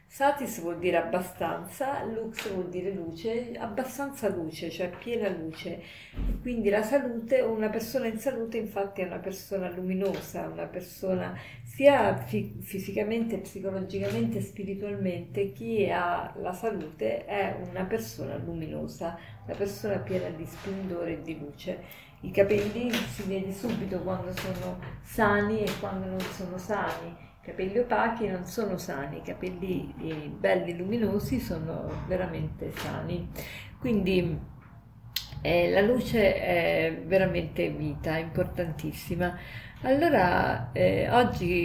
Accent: native